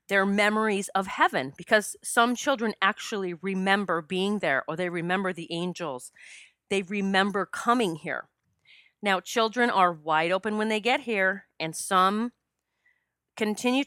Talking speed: 140 wpm